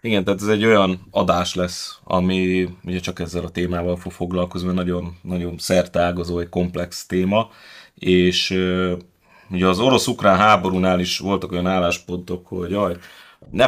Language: Hungarian